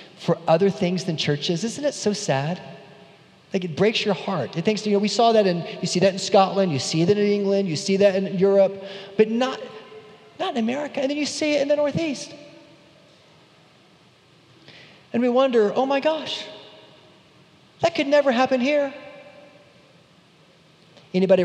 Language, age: English, 30-49